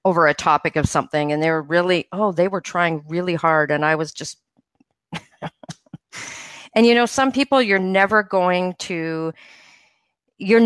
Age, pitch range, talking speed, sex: 40-59, 160-210 Hz, 165 wpm, female